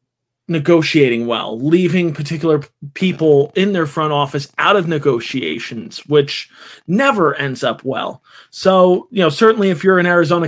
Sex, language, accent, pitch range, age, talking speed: male, English, American, 150-205 Hz, 20-39, 145 wpm